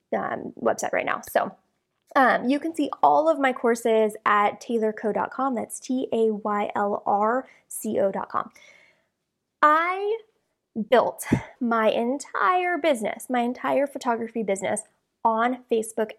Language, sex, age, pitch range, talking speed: English, female, 20-39, 215-275 Hz, 105 wpm